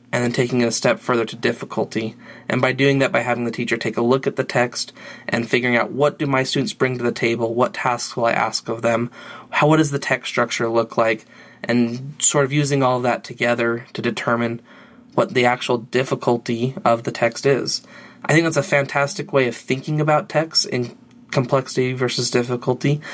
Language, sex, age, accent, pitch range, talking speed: English, male, 20-39, American, 120-140 Hz, 210 wpm